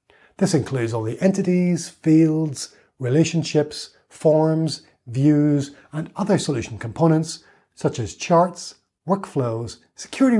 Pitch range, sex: 135-190 Hz, male